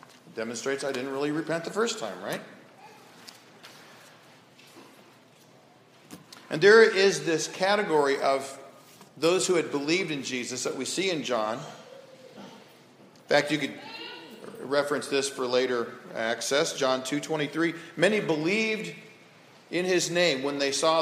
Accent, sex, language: American, male, English